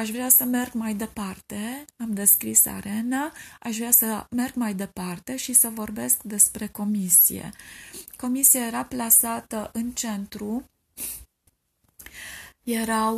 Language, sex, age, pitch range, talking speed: Romanian, female, 20-39, 180-220 Hz, 120 wpm